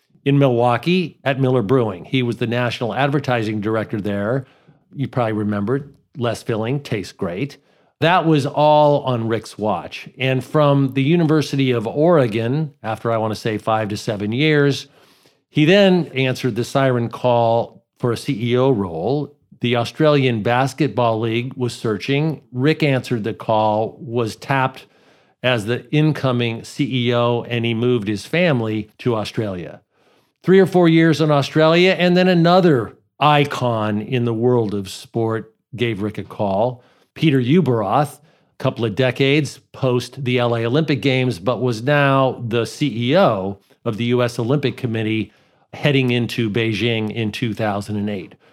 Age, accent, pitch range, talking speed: 50-69, American, 115-145 Hz, 145 wpm